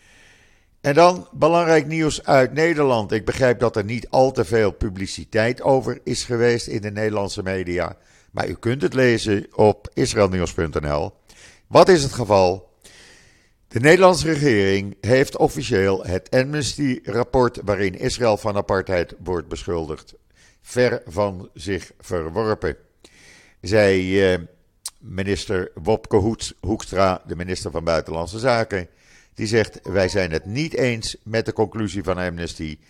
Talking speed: 130 wpm